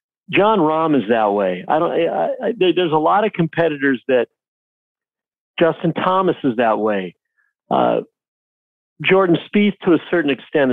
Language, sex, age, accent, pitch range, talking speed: English, male, 50-69, American, 135-195 Hz, 150 wpm